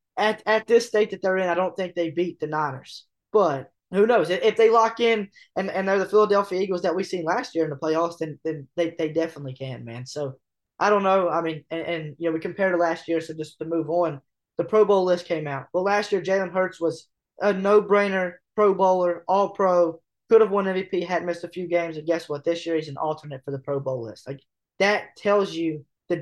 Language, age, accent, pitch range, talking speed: English, 20-39, American, 150-185 Hz, 245 wpm